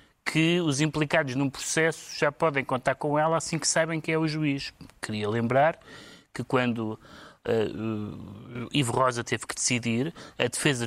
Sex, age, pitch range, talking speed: male, 30-49, 125-155 Hz, 155 wpm